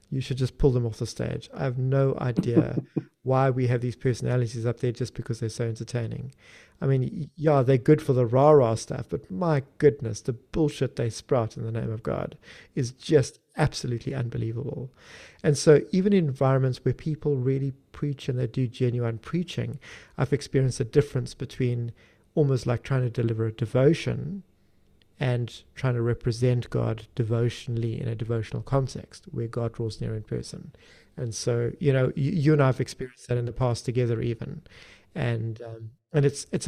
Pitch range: 115-140 Hz